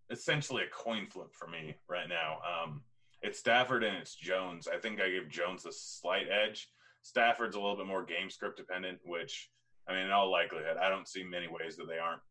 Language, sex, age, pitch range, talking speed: English, male, 30-49, 90-105 Hz, 215 wpm